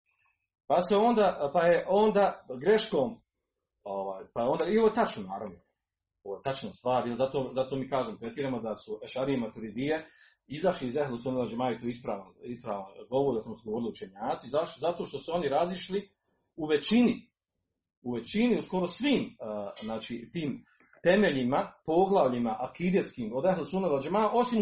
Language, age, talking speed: Croatian, 40-59, 155 wpm